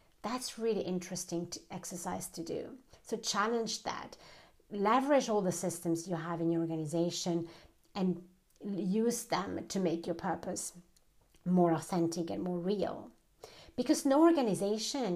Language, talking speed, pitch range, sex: English, 130 wpm, 175-215 Hz, female